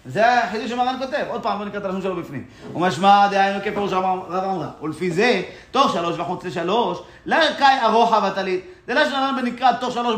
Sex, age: male, 30-49